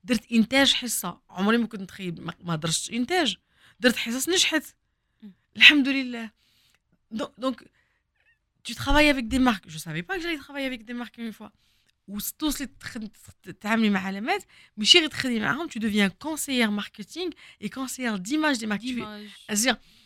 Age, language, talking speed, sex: 20-39, Arabic, 100 wpm, female